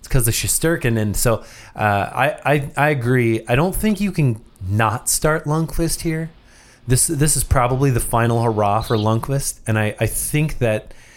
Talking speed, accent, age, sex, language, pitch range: 185 wpm, American, 30-49, male, English, 110-130 Hz